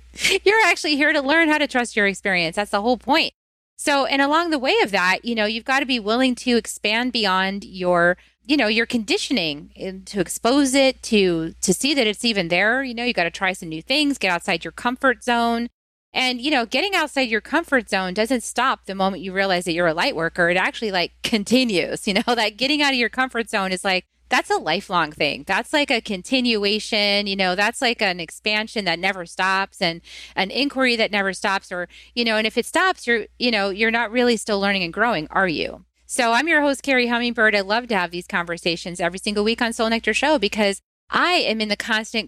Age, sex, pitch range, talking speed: 30-49, female, 190-250 Hz, 230 wpm